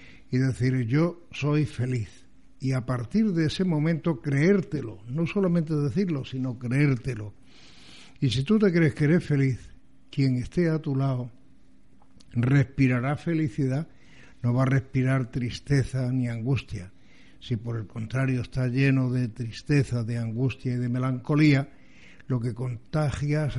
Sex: male